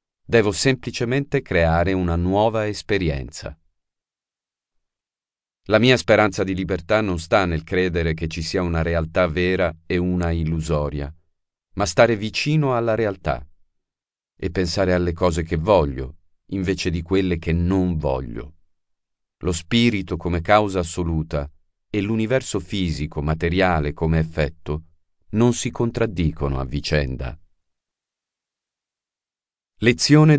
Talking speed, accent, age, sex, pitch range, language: 115 wpm, native, 40-59, male, 80-110 Hz, Italian